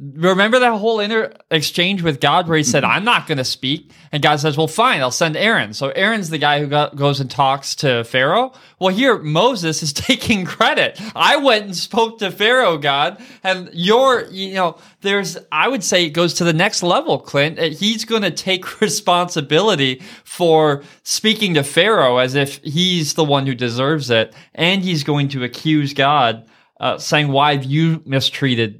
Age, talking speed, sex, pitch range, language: 20-39, 190 wpm, male, 130-180 Hz, English